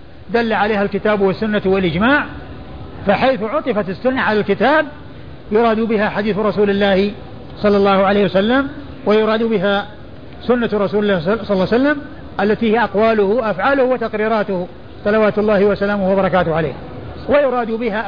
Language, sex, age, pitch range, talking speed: Arabic, male, 50-69, 195-235 Hz, 135 wpm